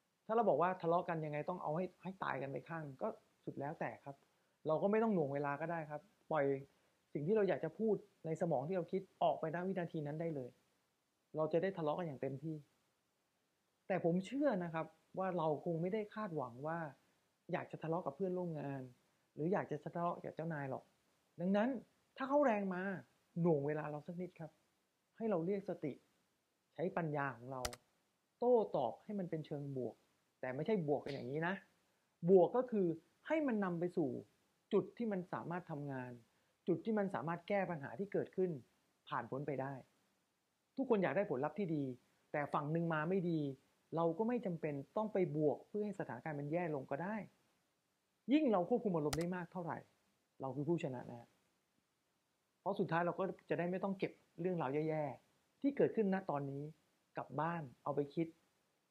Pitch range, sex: 150-190 Hz, male